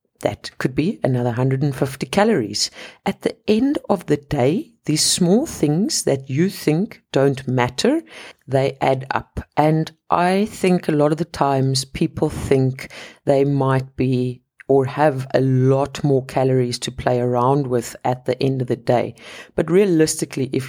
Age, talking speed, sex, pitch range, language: 50-69, 160 wpm, female, 130-165 Hz, English